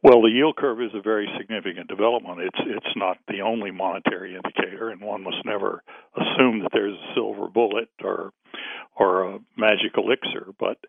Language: English